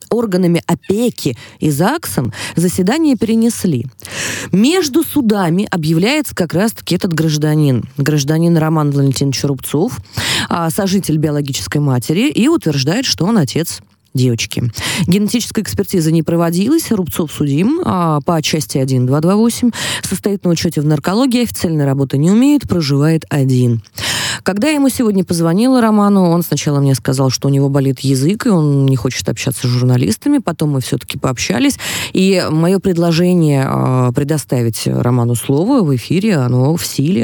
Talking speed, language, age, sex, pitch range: 135 wpm, Russian, 20-39, female, 135-180 Hz